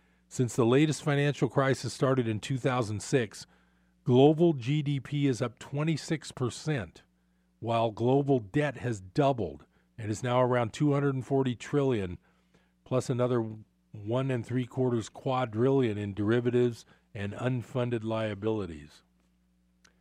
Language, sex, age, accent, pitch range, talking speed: English, male, 40-59, American, 105-130 Hz, 110 wpm